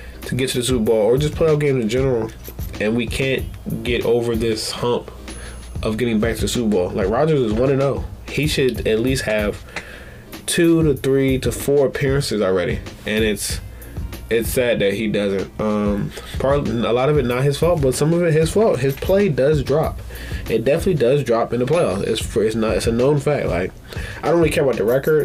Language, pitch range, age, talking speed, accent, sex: English, 110-135 Hz, 20-39, 220 wpm, American, male